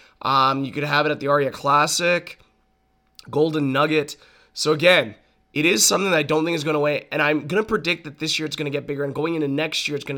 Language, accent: English, American